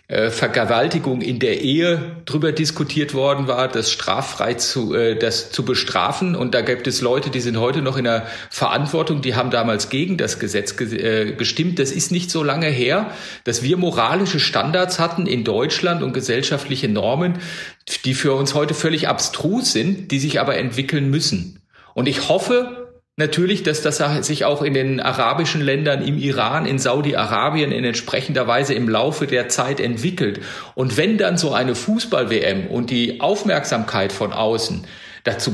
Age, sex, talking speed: 40-59, male, 165 wpm